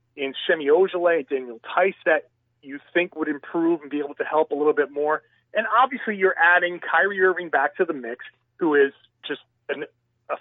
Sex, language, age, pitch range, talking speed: male, English, 40-59, 140-205 Hz, 190 wpm